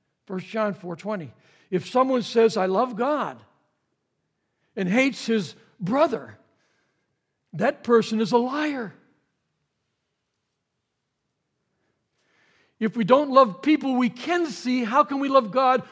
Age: 60-79